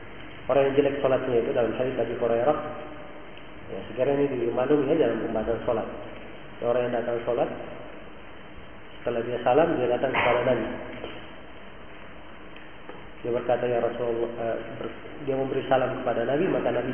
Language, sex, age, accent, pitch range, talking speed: Indonesian, male, 30-49, native, 125-155 Hz, 140 wpm